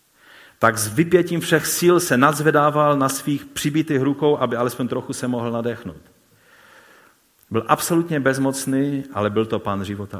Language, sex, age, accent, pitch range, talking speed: Czech, male, 50-69, native, 100-140 Hz, 145 wpm